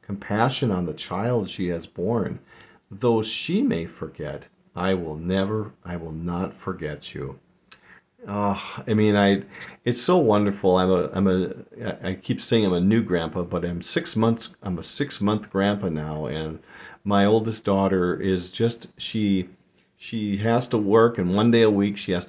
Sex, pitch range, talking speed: male, 90-115 Hz, 175 wpm